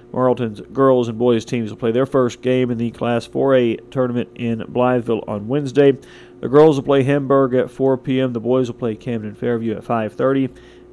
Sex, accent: male, American